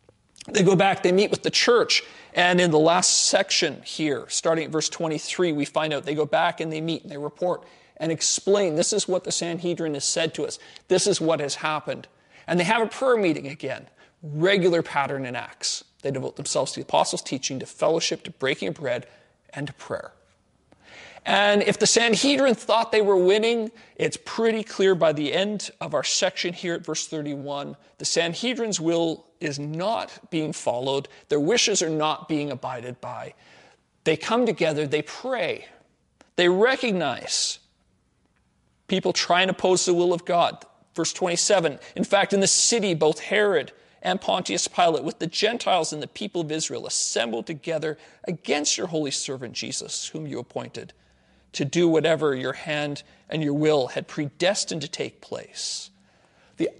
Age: 40-59